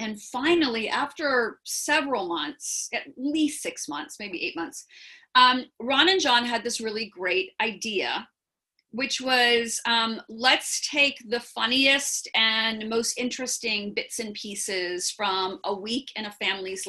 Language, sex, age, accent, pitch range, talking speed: English, female, 40-59, American, 215-270 Hz, 140 wpm